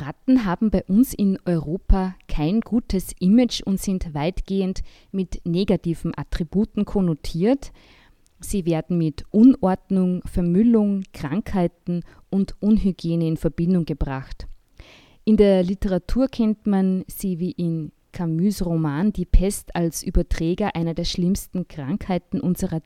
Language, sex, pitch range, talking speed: German, female, 165-200 Hz, 120 wpm